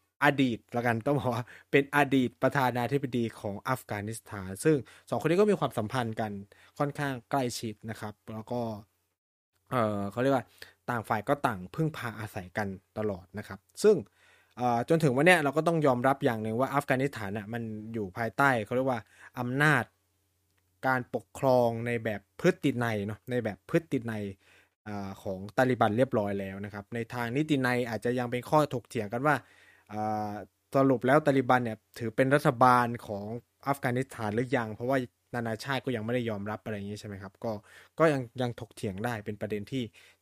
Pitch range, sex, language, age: 105-140 Hz, male, Thai, 20-39